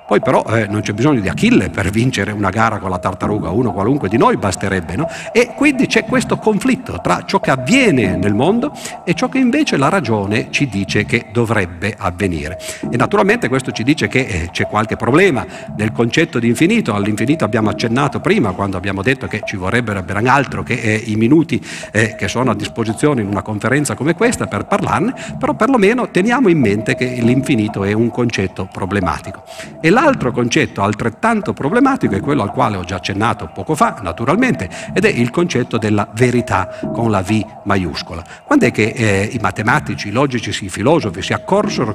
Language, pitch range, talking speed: Italian, 105-145 Hz, 190 wpm